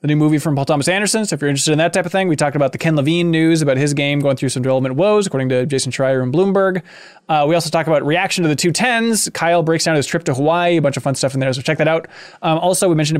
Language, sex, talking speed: English, male, 315 wpm